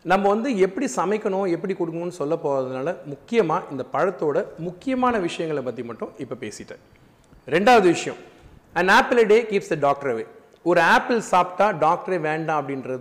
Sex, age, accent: male, 40-59, native